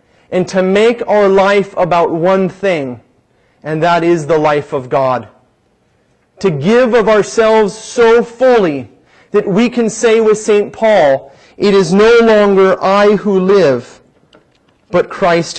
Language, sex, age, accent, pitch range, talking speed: English, male, 30-49, American, 135-190 Hz, 140 wpm